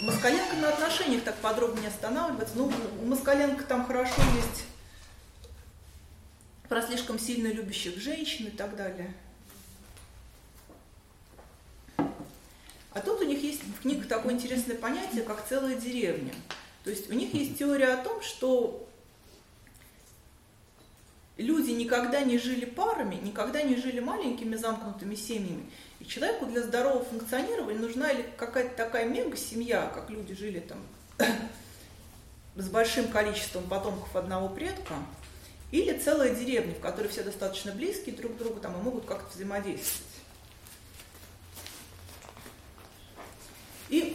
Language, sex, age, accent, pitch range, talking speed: Russian, female, 30-49, native, 195-265 Hz, 125 wpm